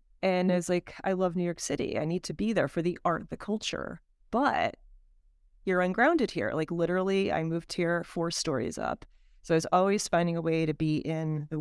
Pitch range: 155-195 Hz